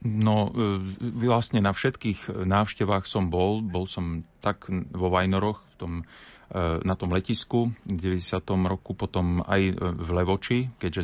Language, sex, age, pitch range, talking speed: Slovak, male, 30-49, 90-105 Hz, 130 wpm